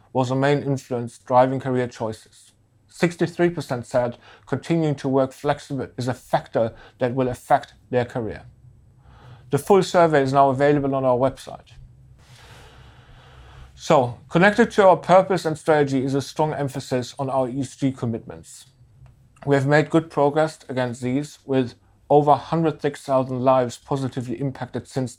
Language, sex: English, male